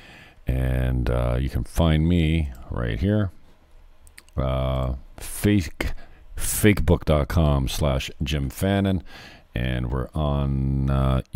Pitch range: 70-90 Hz